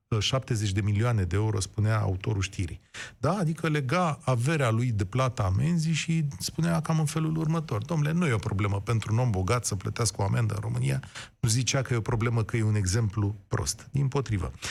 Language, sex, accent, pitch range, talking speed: Romanian, male, native, 110-145 Hz, 200 wpm